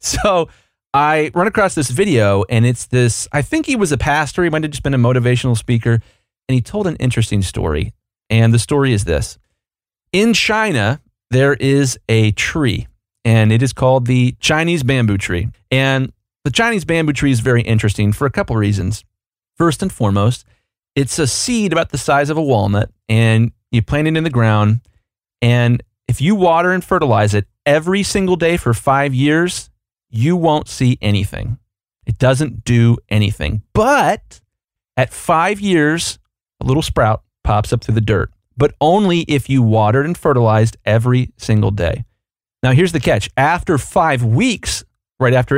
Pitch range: 110-145 Hz